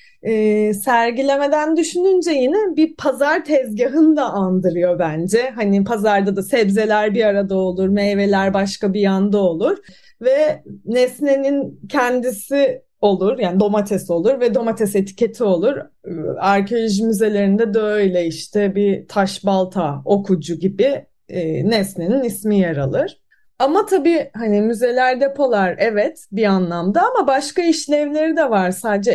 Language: Turkish